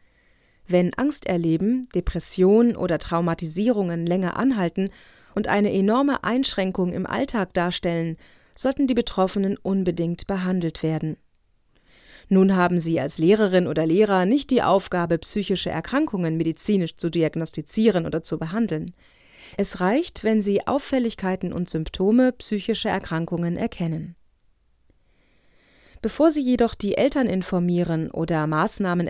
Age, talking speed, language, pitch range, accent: 30-49, 120 wpm, German, 170-220 Hz, German